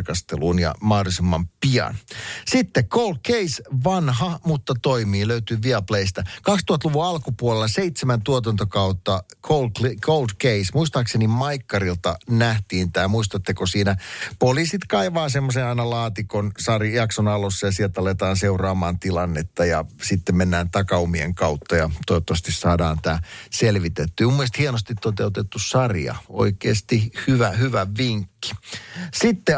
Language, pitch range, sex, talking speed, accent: Finnish, 95-135 Hz, male, 110 wpm, native